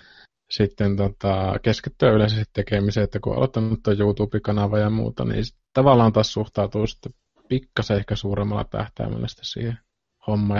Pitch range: 105-120 Hz